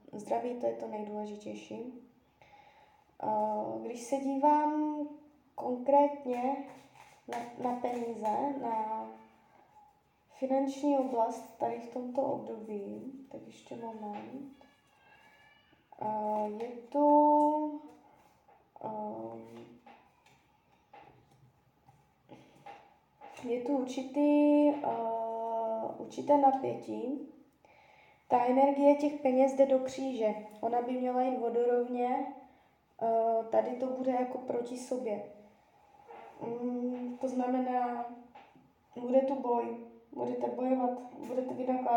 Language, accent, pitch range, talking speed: Czech, native, 225-275 Hz, 75 wpm